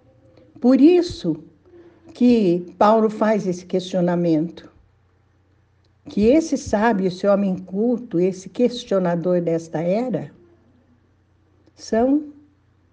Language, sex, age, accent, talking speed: Portuguese, female, 60-79, Brazilian, 85 wpm